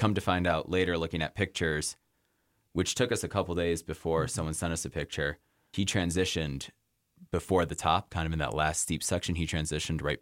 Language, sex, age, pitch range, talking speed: English, male, 20-39, 80-95 Hz, 210 wpm